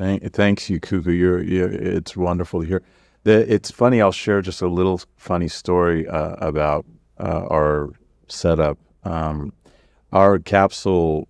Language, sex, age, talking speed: English, male, 40-59, 120 wpm